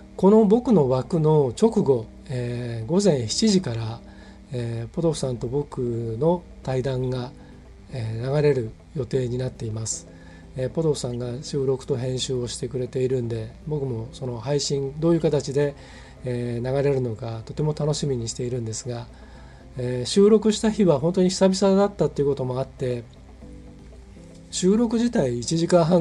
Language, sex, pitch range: Japanese, male, 120-160 Hz